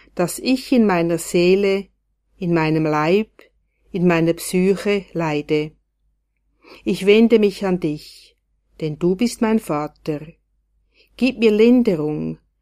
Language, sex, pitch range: German, female, 165-230 Hz